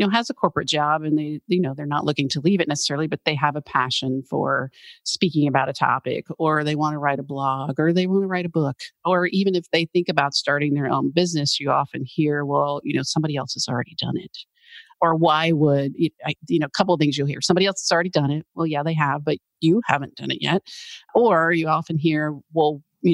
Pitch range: 145-170 Hz